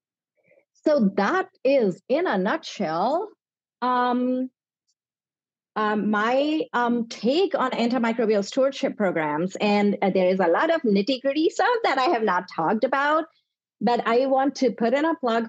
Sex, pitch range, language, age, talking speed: female, 200-265 Hz, English, 40-59, 145 wpm